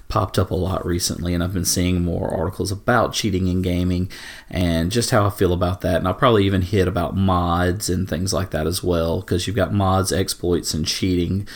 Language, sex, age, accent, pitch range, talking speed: English, male, 30-49, American, 90-110 Hz, 220 wpm